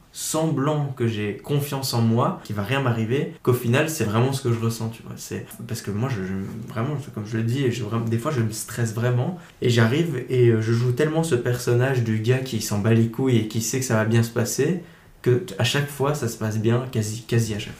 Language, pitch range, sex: French, 115-135 Hz, male